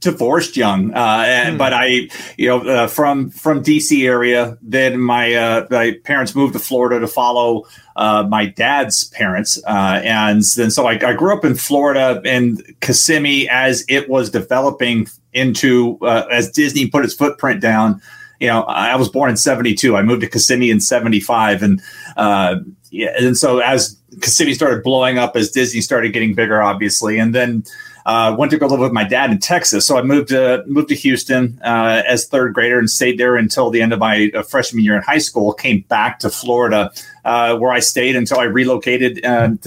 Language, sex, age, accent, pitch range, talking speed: English, male, 30-49, American, 115-135 Hz, 195 wpm